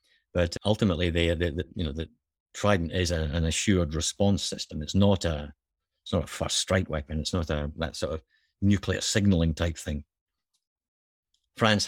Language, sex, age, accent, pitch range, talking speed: English, male, 50-69, British, 85-105 Hz, 170 wpm